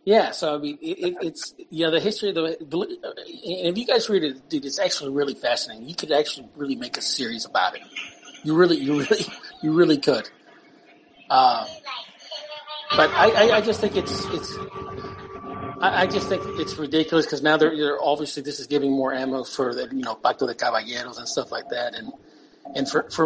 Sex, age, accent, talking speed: male, 40-59, American, 195 wpm